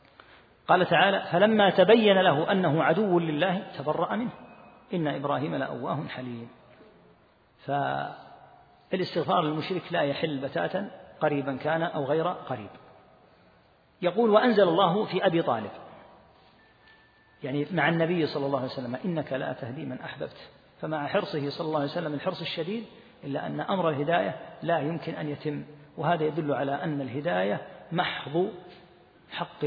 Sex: male